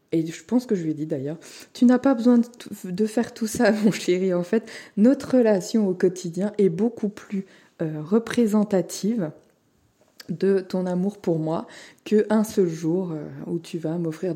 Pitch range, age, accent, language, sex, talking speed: 175-235 Hz, 20-39, French, French, female, 190 wpm